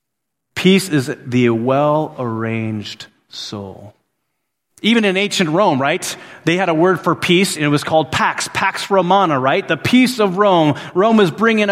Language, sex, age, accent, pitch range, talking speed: English, male, 30-49, American, 140-190 Hz, 160 wpm